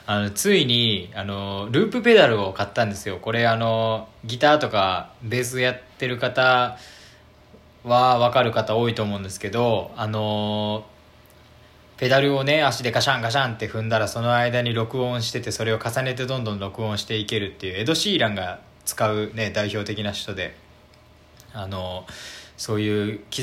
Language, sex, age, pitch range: Japanese, male, 20-39, 100-125 Hz